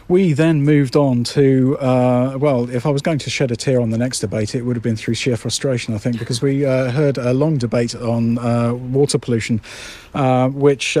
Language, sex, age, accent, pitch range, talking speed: English, male, 40-59, British, 115-135 Hz, 225 wpm